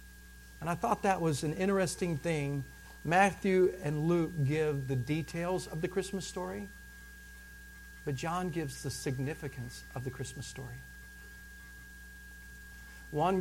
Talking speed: 125 wpm